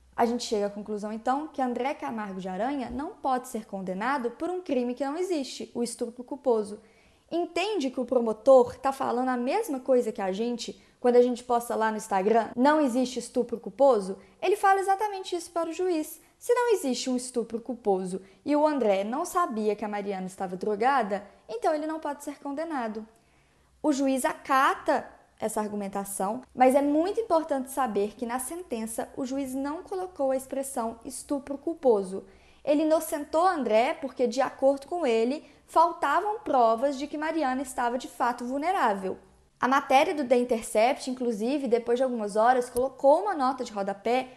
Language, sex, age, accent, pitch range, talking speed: Portuguese, female, 10-29, Brazilian, 235-305 Hz, 175 wpm